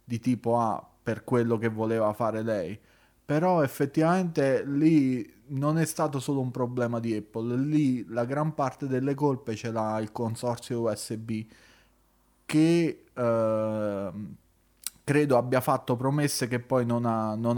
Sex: male